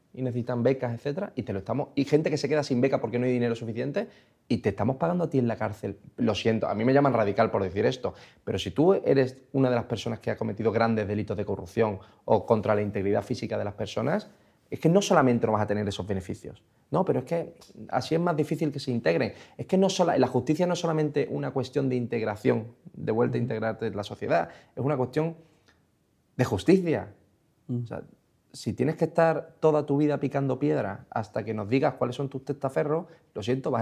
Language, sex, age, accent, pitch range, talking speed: Spanish, male, 30-49, Spanish, 115-150 Hz, 230 wpm